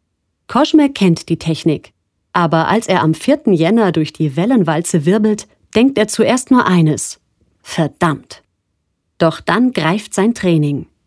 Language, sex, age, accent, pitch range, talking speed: German, female, 30-49, German, 150-215 Hz, 135 wpm